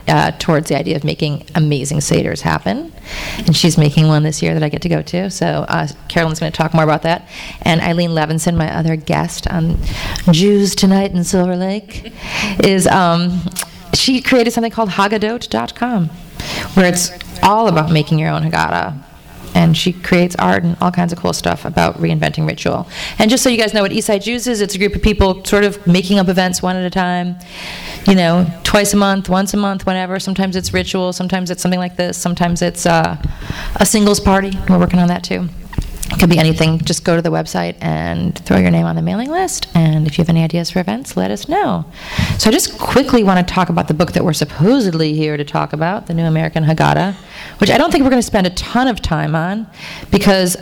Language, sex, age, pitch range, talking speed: English, female, 30-49, 165-195 Hz, 220 wpm